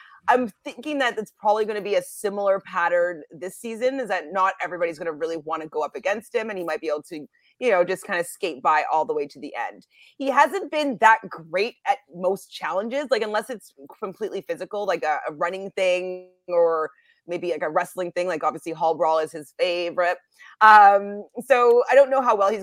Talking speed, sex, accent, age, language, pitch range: 225 wpm, female, American, 30-49, English, 175-225 Hz